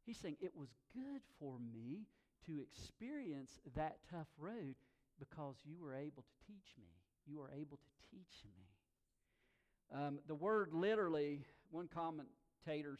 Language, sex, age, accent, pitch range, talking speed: English, male, 50-69, American, 120-155 Hz, 145 wpm